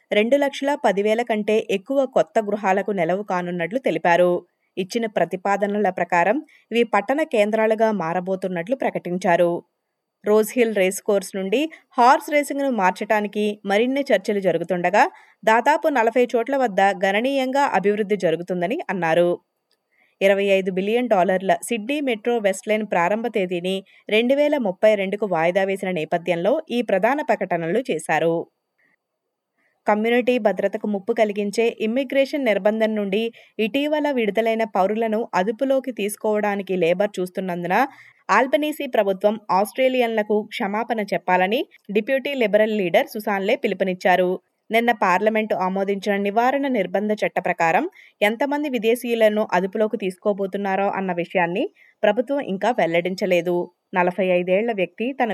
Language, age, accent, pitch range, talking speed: Telugu, 20-39, native, 185-240 Hz, 105 wpm